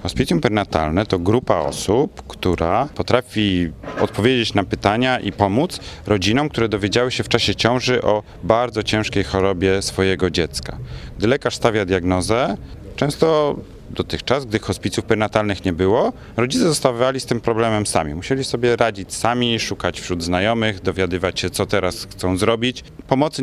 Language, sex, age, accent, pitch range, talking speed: Polish, male, 40-59, native, 100-120 Hz, 145 wpm